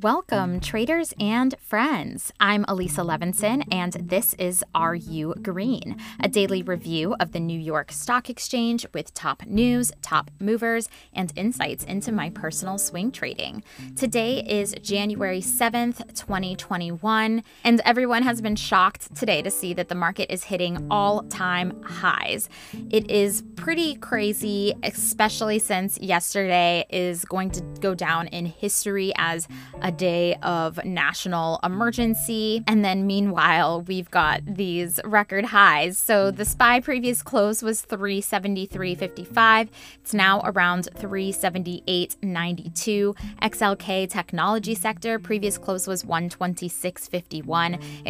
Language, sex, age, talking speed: English, female, 20-39, 125 wpm